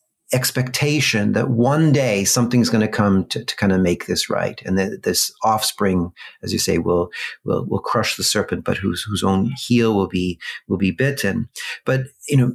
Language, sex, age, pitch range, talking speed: English, male, 40-59, 105-130 Hz, 195 wpm